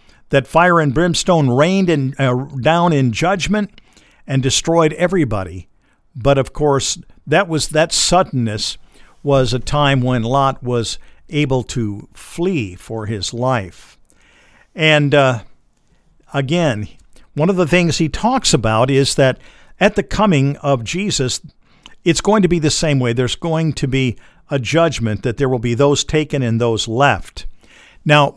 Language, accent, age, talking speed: English, American, 50-69, 150 wpm